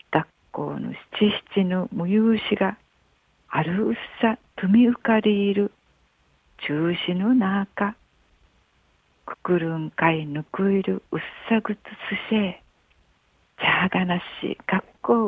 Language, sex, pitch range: Japanese, female, 155-215 Hz